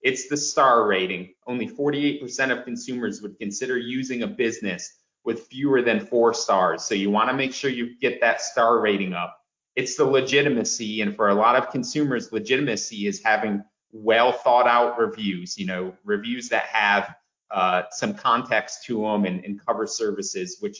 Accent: American